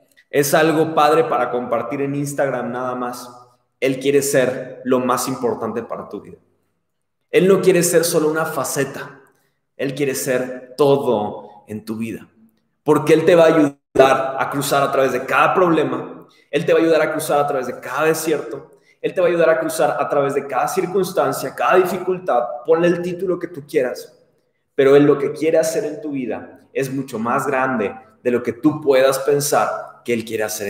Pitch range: 130-160 Hz